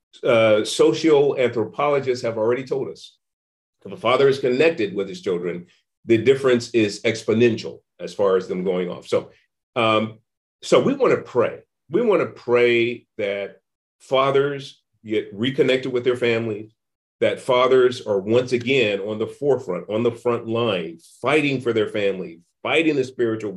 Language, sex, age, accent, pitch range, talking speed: English, male, 40-59, American, 105-155 Hz, 155 wpm